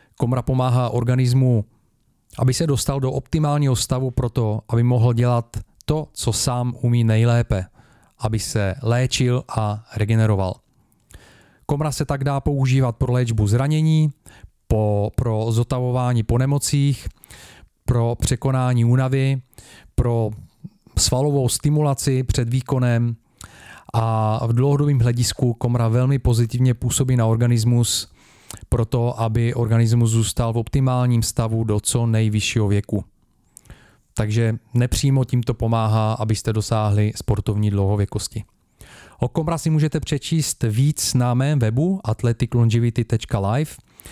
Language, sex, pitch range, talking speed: Czech, male, 110-125 Hz, 110 wpm